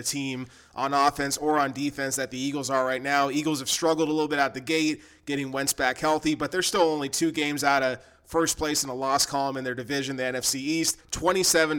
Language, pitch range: English, 135-160 Hz